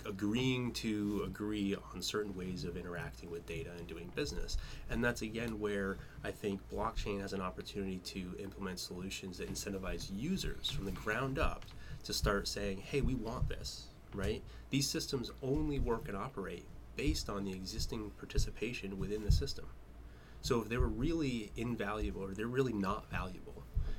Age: 30-49